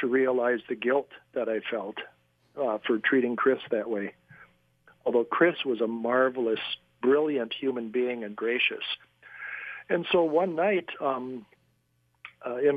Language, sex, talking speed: English, male, 135 wpm